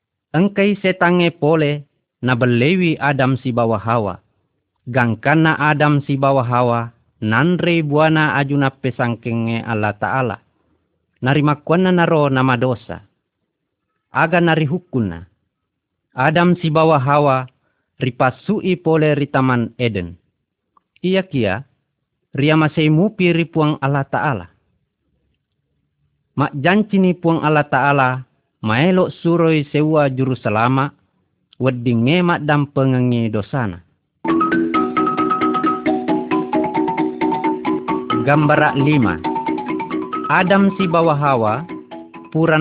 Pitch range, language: 120-165 Hz, Malay